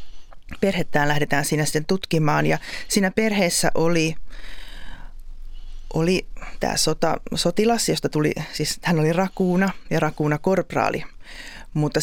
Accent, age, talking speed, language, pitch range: native, 30-49, 110 wpm, Finnish, 150-190 Hz